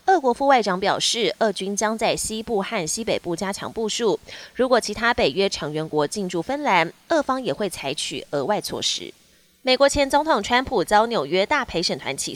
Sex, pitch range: female, 180-245 Hz